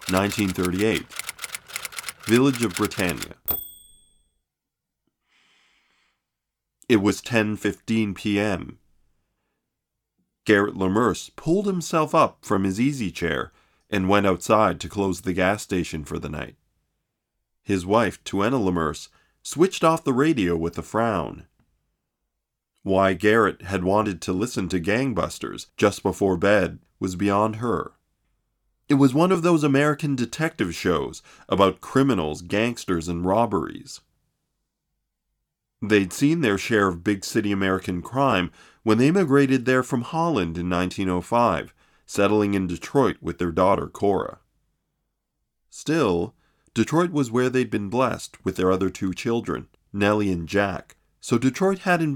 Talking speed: 125 wpm